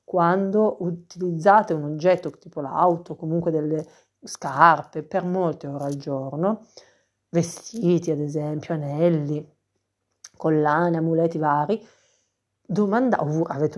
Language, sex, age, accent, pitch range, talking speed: Italian, female, 40-59, native, 150-195 Hz, 95 wpm